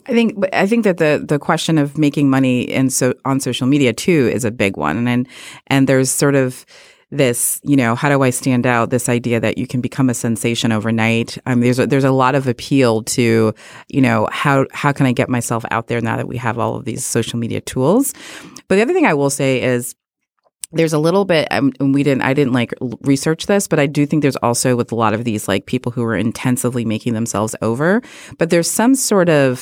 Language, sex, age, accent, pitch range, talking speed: English, female, 30-49, American, 120-145 Hz, 240 wpm